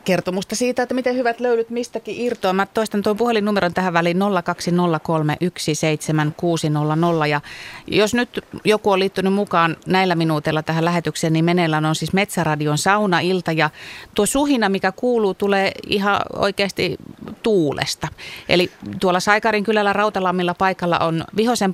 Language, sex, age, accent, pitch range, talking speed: Finnish, female, 30-49, native, 155-200 Hz, 135 wpm